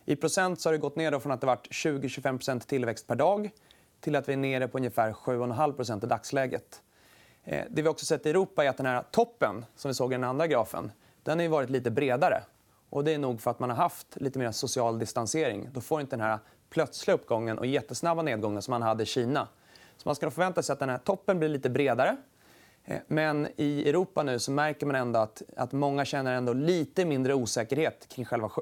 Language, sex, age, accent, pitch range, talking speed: Swedish, male, 30-49, native, 125-160 Hz, 220 wpm